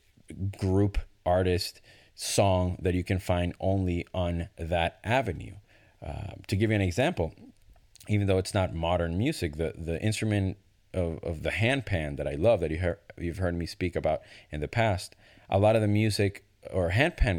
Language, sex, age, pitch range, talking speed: English, male, 30-49, 85-105 Hz, 175 wpm